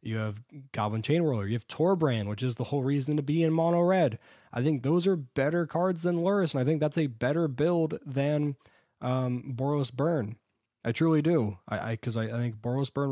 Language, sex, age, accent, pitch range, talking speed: English, male, 20-39, American, 110-140 Hz, 215 wpm